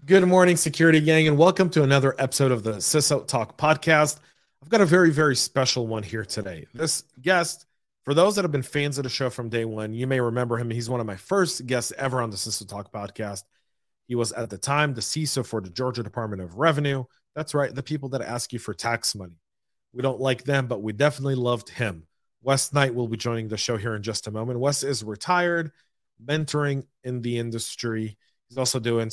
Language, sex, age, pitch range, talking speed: English, male, 30-49, 110-145 Hz, 220 wpm